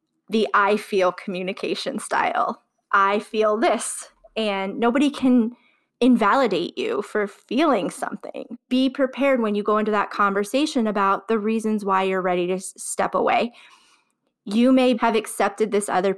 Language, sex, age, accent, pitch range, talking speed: English, female, 20-39, American, 195-235 Hz, 145 wpm